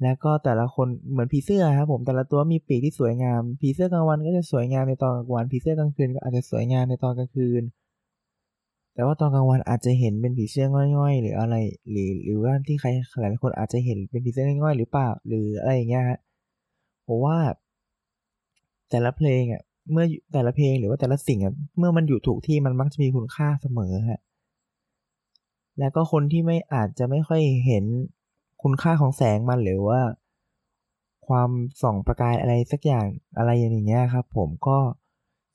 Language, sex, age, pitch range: Thai, male, 20-39, 115-140 Hz